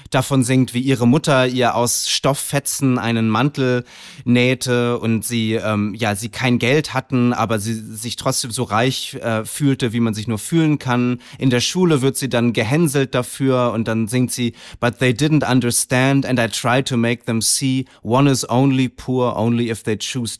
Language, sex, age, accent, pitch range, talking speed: German, male, 30-49, German, 110-130 Hz, 190 wpm